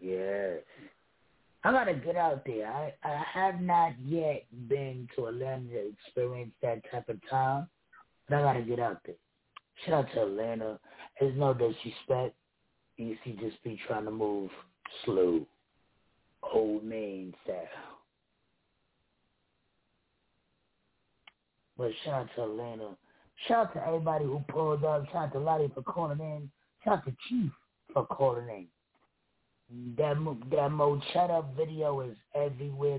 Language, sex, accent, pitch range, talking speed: English, male, American, 115-140 Hz, 135 wpm